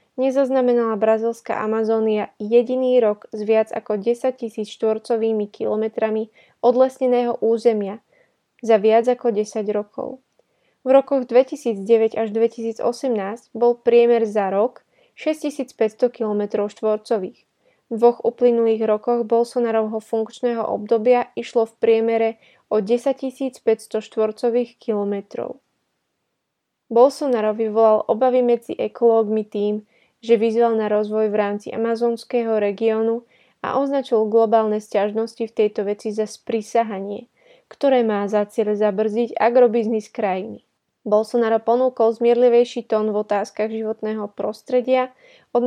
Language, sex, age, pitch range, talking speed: Slovak, female, 20-39, 215-240 Hz, 110 wpm